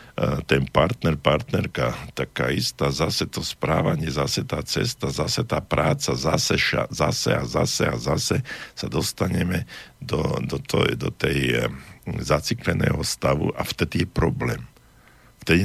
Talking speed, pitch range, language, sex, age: 140 wpm, 75-95 Hz, Slovak, male, 50-69